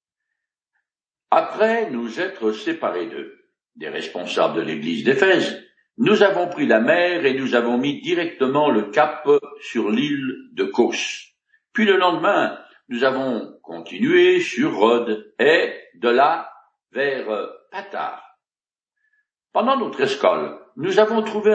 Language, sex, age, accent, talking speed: French, male, 60-79, French, 125 wpm